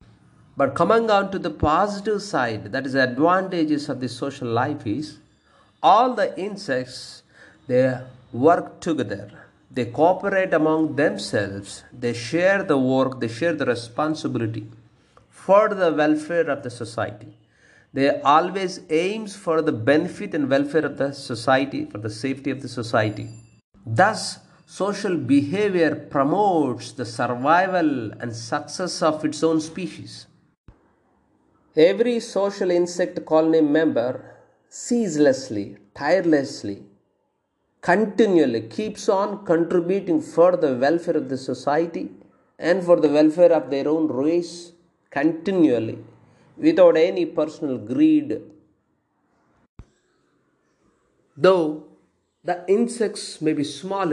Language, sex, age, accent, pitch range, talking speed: English, male, 50-69, Indian, 130-180 Hz, 115 wpm